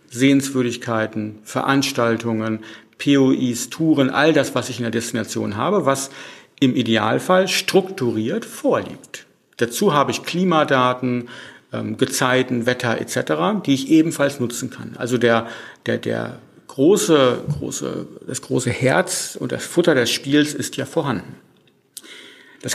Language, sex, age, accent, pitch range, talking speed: German, male, 50-69, German, 120-150 Hz, 125 wpm